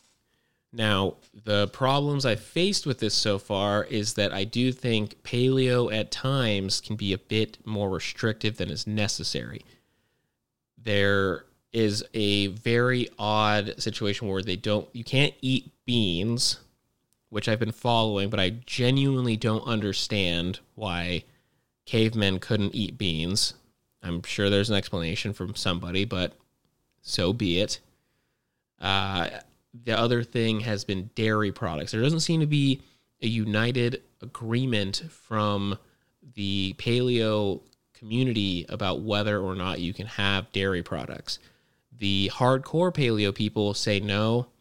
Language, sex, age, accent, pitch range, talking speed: English, male, 30-49, American, 100-125 Hz, 135 wpm